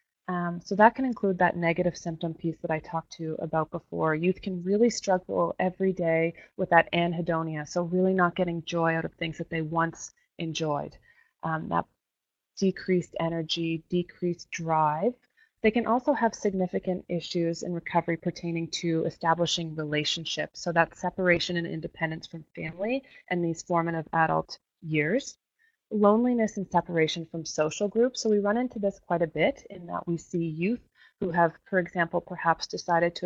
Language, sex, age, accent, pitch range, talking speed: English, female, 20-39, American, 165-195 Hz, 170 wpm